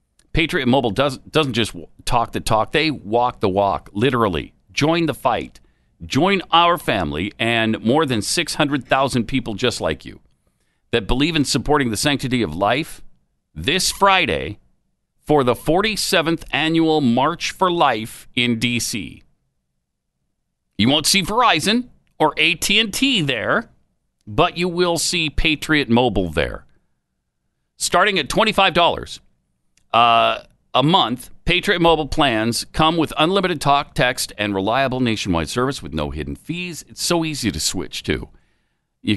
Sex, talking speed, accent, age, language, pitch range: male, 135 wpm, American, 50-69, English, 115-165 Hz